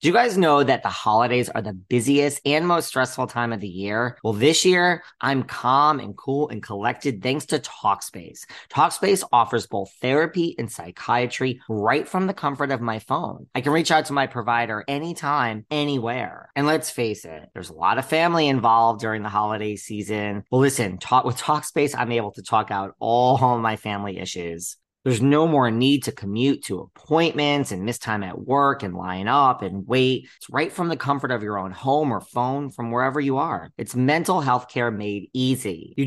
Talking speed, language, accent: 195 wpm, English, American